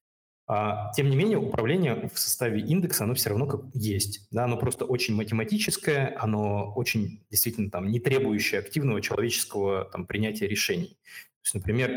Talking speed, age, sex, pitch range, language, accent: 140 wpm, 20-39, male, 105-135 Hz, Russian, native